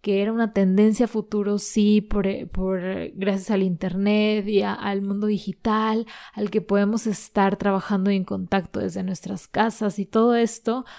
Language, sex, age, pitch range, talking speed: Spanish, female, 20-39, 190-215 Hz, 165 wpm